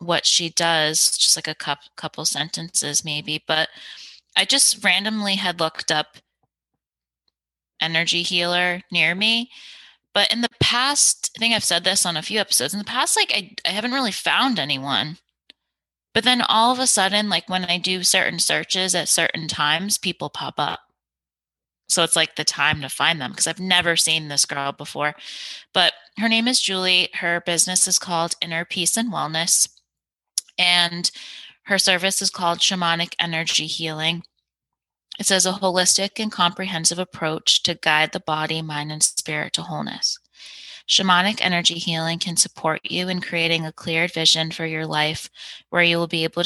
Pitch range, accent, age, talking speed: 160-185 Hz, American, 20-39, 170 wpm